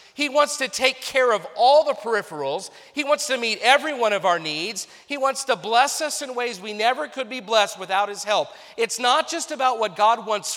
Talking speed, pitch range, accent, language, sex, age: 225 wpm, 170-225 Hz, American, English, male, 40-59